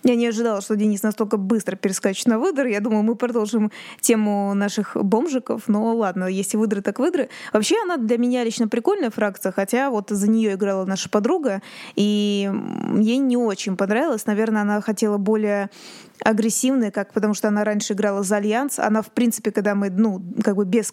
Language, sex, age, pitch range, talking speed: Russian, female, 20-39, 210-235 Hz, 185 wpm